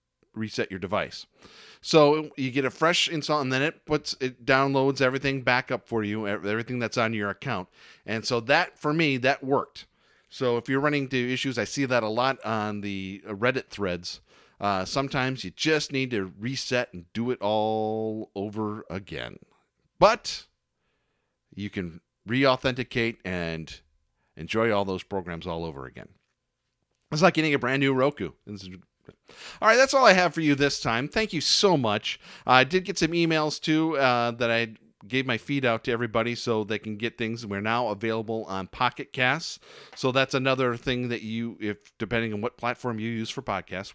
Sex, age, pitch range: male, 40-59, 110-135 Hz